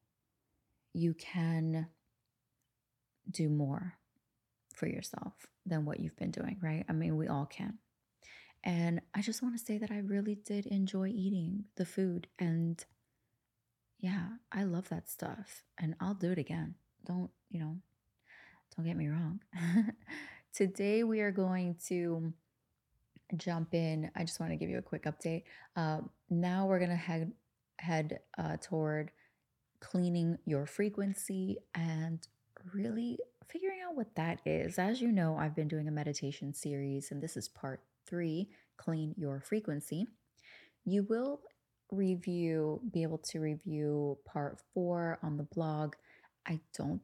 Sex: female